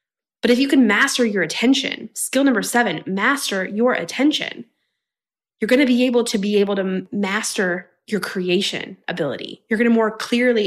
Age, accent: 20-39, American